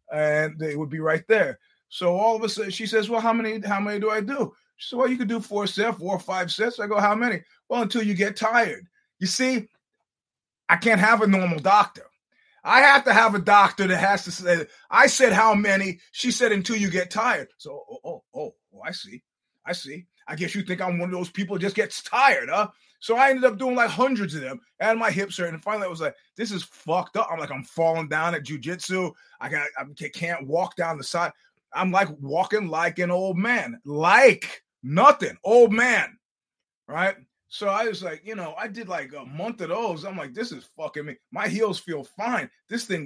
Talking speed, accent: 230 wpm, American